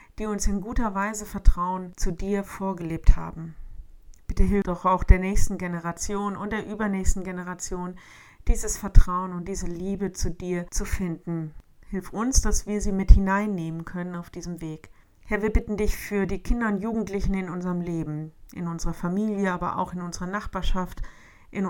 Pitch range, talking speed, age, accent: 175-210 Hz, 170 wpm, 50-69, German